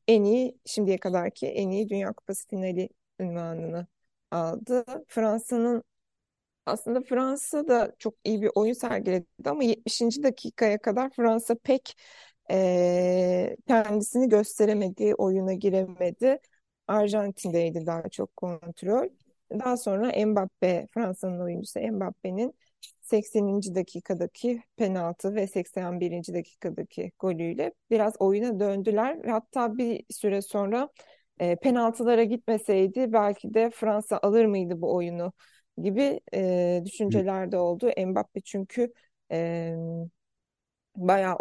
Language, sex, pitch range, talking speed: Turkish, female, 185-230 Hz, 105 wpm